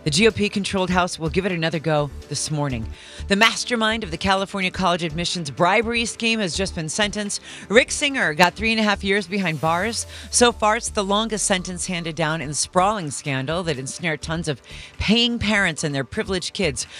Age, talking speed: 40-59, 195 wpm